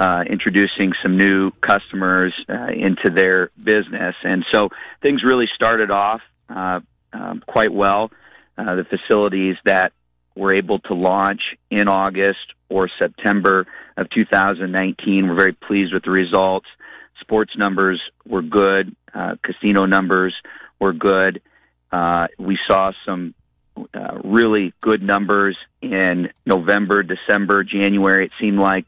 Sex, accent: male, American